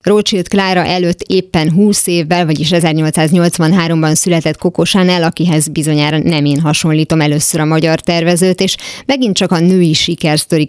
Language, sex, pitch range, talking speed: Hungarian, female, 155-180 Hz, 145 wpm